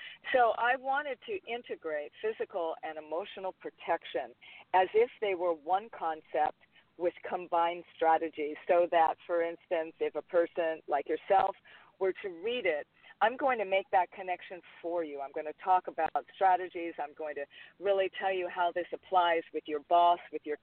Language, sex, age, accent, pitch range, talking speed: English, female, 50-69, American, 160-200 Hz, 170 wpm